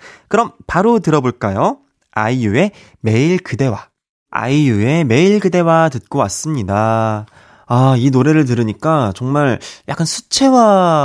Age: 20-39